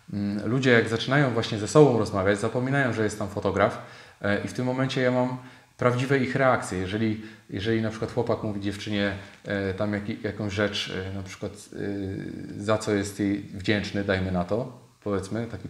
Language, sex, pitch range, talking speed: Polish, male, 105-125 Hz, 165 wpm